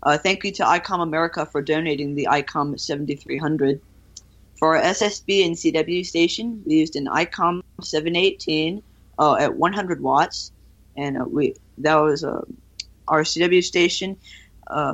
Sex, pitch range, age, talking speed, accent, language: female, 140-175 Hz, 20-39, 165 wpm, American, English